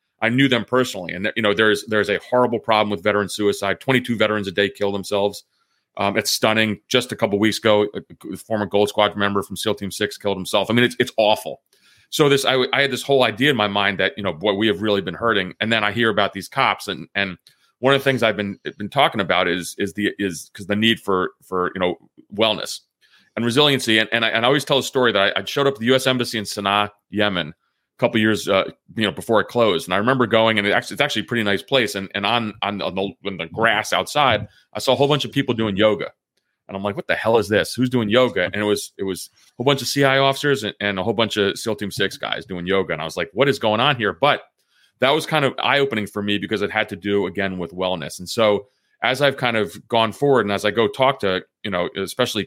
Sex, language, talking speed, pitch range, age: male, English, 270 wpm, 100-125 Hz, 30-49